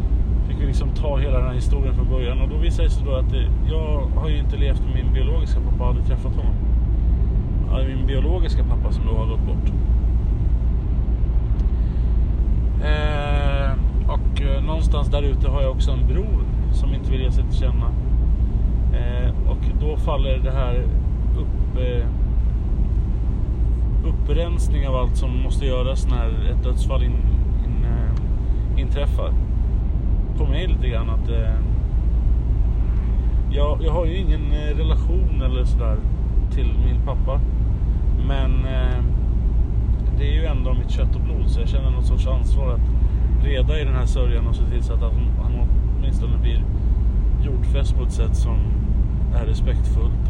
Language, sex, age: Swedish, male, 30-49